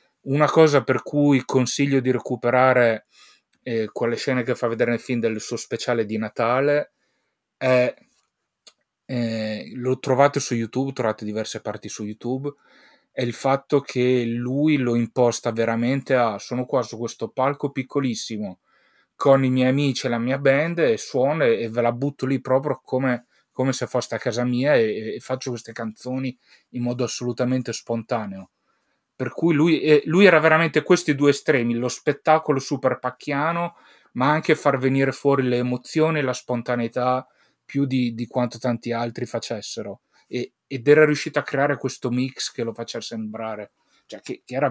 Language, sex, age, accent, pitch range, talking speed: Italian, male, 30-49, native, 115-140 Hz, 170 wpm